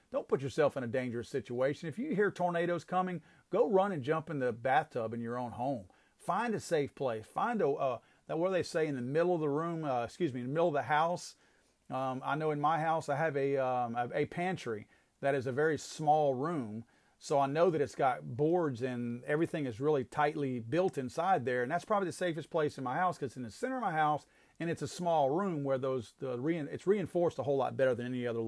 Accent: American